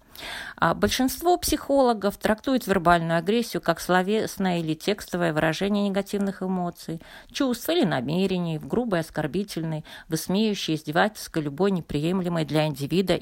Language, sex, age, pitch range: Russian, female, 40-59, 160-230 Hz